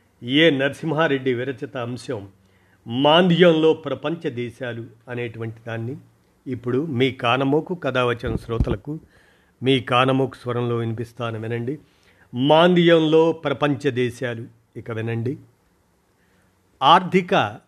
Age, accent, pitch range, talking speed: 50-69, native, 120-155 Hz, 85 wpm